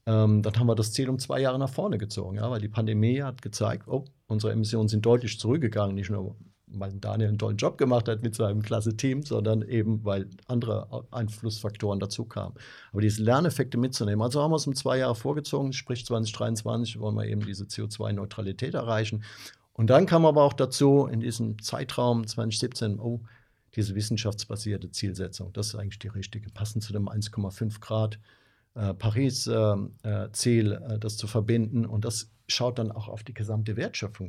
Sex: male